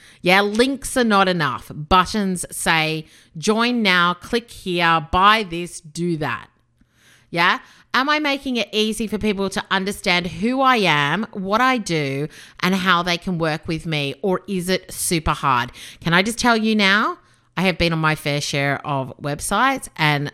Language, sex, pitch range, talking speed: English, female, 160-205 Hz, 175 wpm